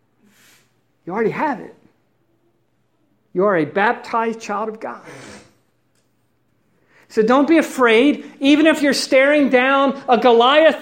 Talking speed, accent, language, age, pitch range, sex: 120 wpm, American, English, 50-69, 155-255 Hz, male